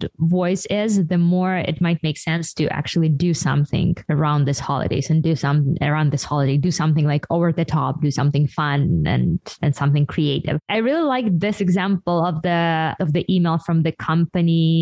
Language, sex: English, female